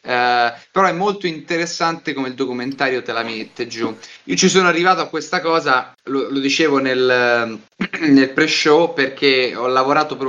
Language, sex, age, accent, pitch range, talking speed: Italian, male, 30-49, native, 130-160 Hz, 165 wpm